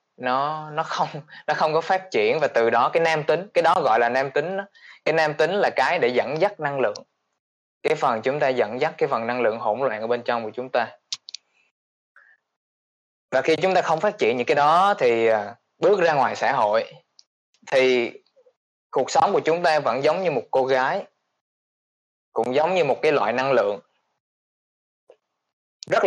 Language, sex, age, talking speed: Vietnamese, male, 20-39, 200 wpm